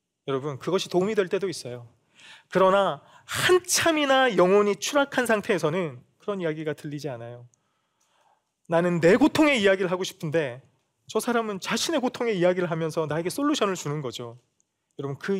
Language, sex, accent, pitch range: Korean, male, native, 135-195 Hz